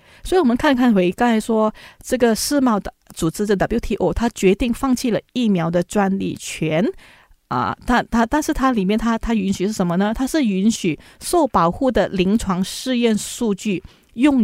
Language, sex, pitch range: Chinese, female, 185-250 Hz